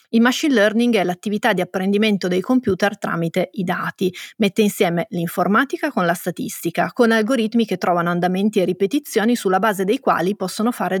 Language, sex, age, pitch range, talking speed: Italian, female, 30-49, 180-225 Hz, 170 wpm